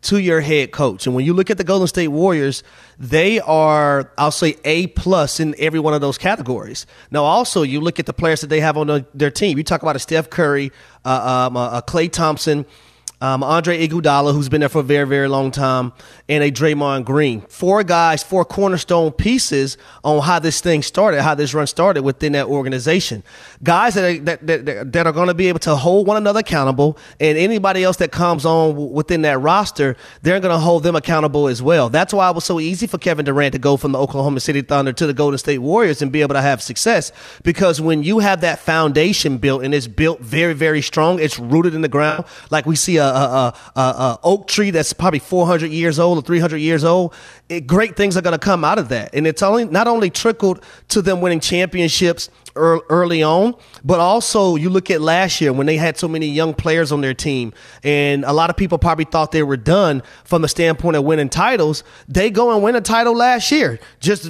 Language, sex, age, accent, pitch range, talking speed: English, male, 30-49, American, 145-175 Hz, 225 wpm